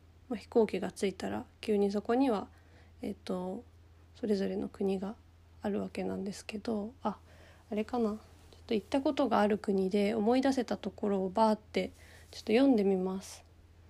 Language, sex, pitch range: Japanese, female, 190-225 Hz